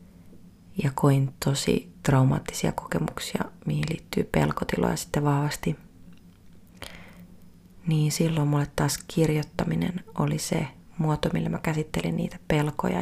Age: 30-49